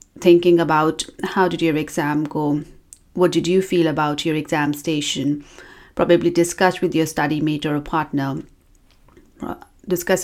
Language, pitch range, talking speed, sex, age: English, 165-205 Hz, 140 wpm, female, 30-49